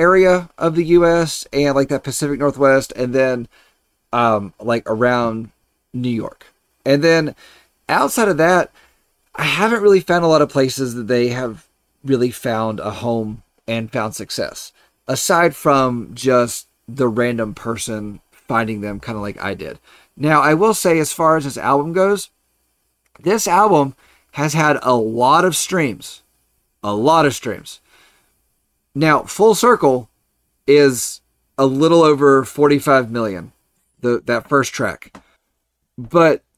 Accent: American